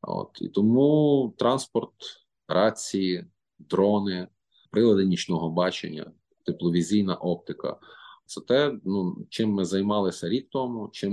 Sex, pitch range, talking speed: male, 80-95 Hz, 115 wpm